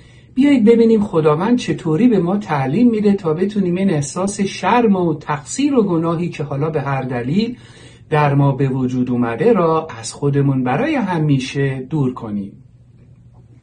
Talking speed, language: 150 wpm, Persian